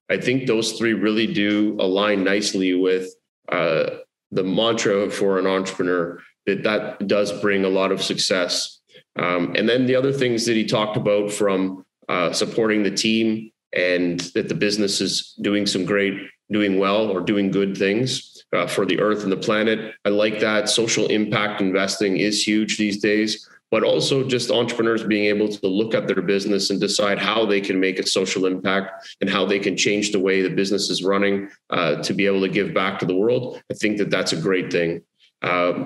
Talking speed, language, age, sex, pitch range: 195 wpm, English, 30-49, male, 95-110 Hz